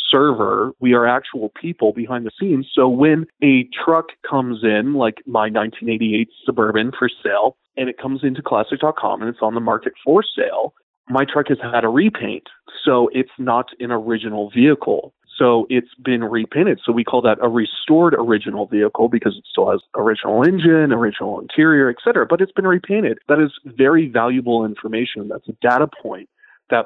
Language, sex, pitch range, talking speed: English, male, 110-135 Hz, 180 wpm